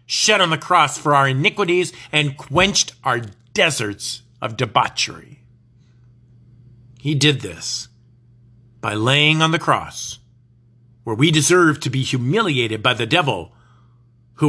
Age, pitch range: 40-59, 120-180 Hz